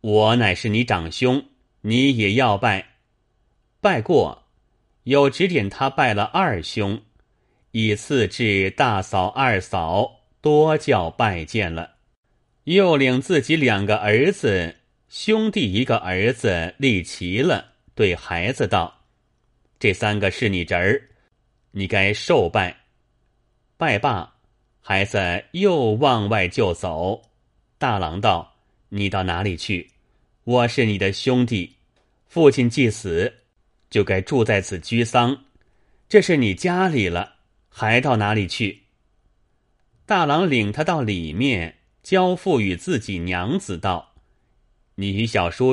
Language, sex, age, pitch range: Chinese, male, 30-49, 95-130 Hz